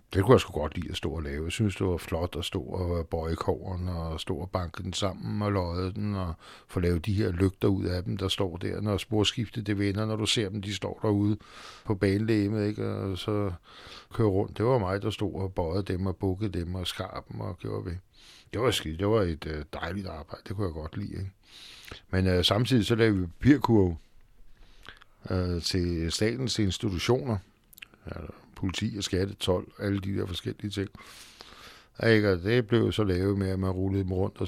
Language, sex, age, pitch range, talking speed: Danish, male, 60-79, 90-105 Hz, 210 wpm